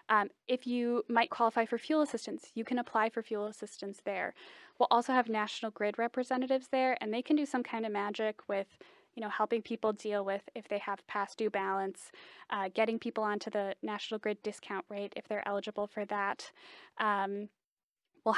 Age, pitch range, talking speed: 10-29, 205-245 Hz, 195 wpm